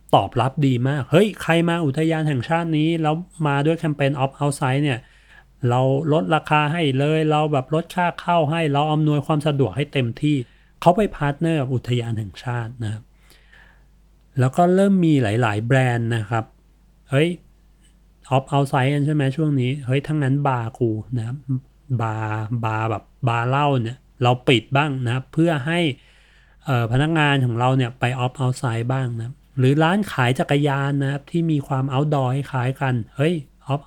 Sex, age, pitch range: male, 30-49, 125-155 Hz